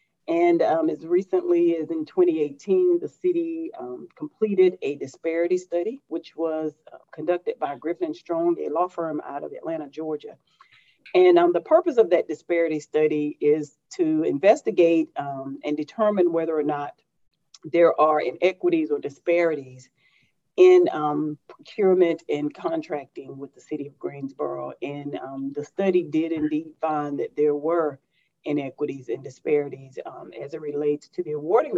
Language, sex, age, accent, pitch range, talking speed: English, female, 40-59, American, 150-220 Hz, 150 wpm